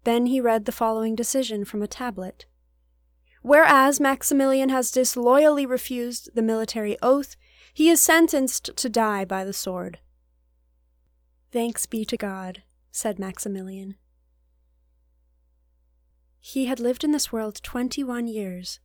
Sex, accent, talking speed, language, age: female, American, 125 wpm, English, 10-29